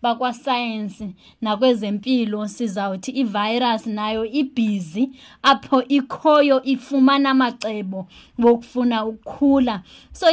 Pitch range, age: 225-275 Hz, 20-39